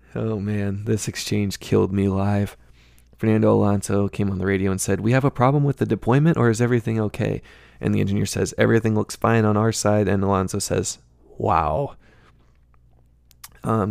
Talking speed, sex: 175 wpm, male